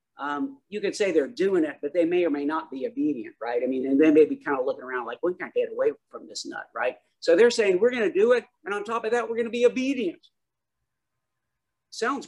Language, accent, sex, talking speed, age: English, American, male, 265 wpm, 50-69